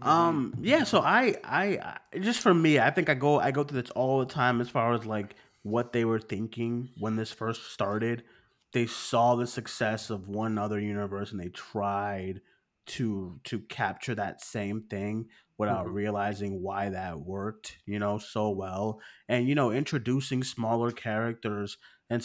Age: 20-39